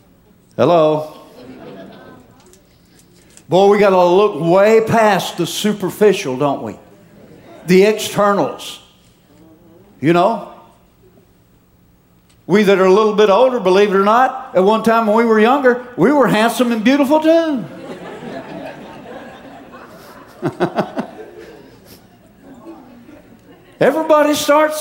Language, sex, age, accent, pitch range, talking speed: English, male, 60-79, American, 170-245 Hz, 100 wpm